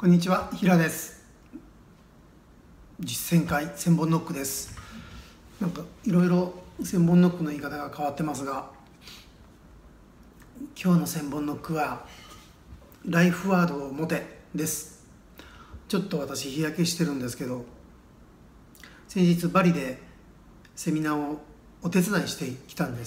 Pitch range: 145-180 Hz